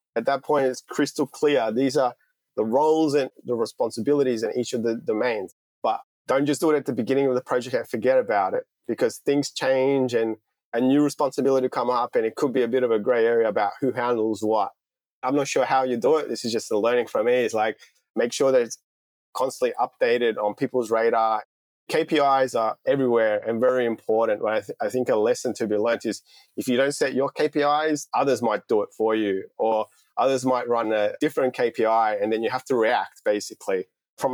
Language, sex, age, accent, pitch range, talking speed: English, male, 20-39, Australian, 115-150 Hz, 215 wpm